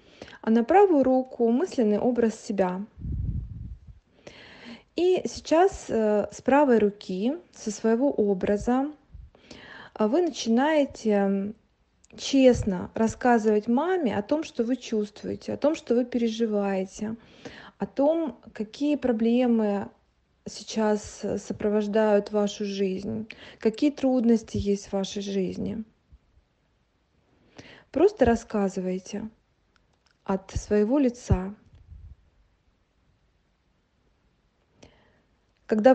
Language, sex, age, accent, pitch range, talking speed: Russian, female, 20-39, native, 205-260 Hz, 85 wpm